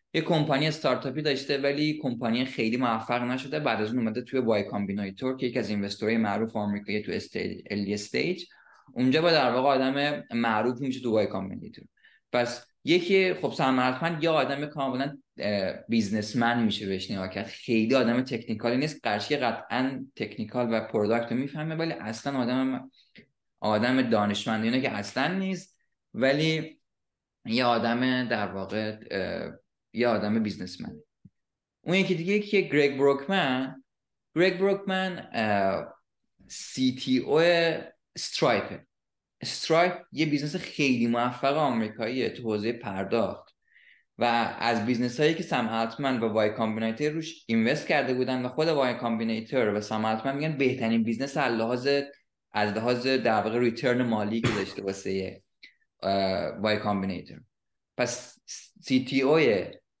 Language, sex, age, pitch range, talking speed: English, male, 20-39, 110-140 Hz, 130 wpm